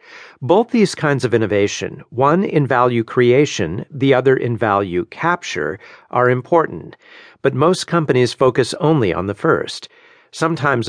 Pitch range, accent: 115-150 Hz, American